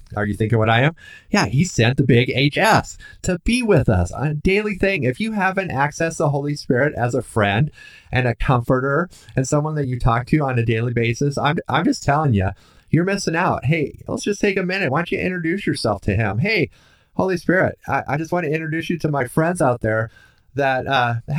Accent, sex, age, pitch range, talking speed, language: American, male, 30-49, 120-165 Hz, 225 wpm, English